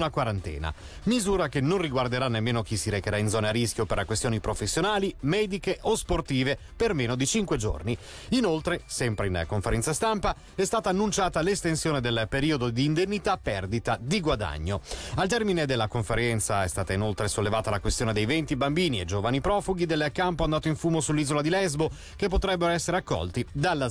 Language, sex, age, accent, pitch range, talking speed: Italian, male, 30-49, native, 110-175 Hz, 175 wpm